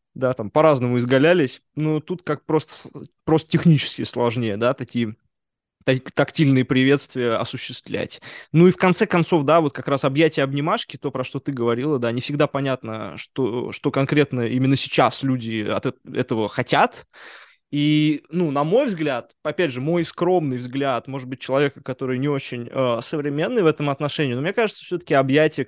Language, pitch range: Russian, 125-155 Hz